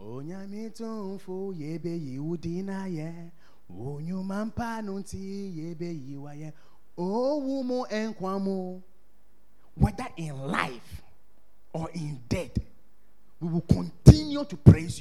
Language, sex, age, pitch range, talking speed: English, male, 30-49, 150-215 Hz, 45 wpm